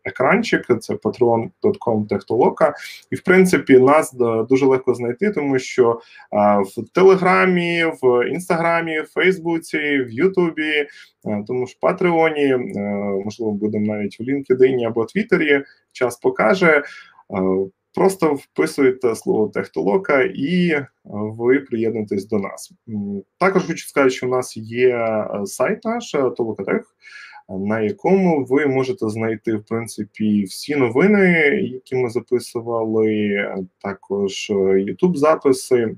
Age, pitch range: 20-39, 110-155 Hz